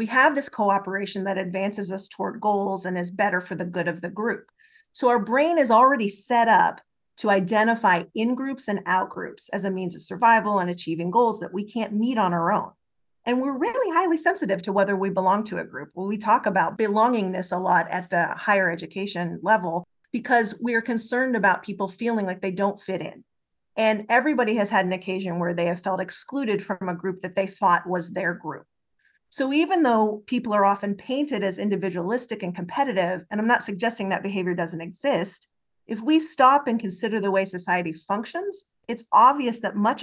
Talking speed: 200 wpm